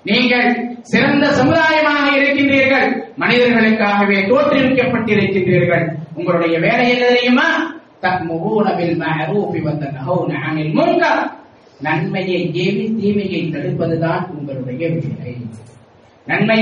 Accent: Indian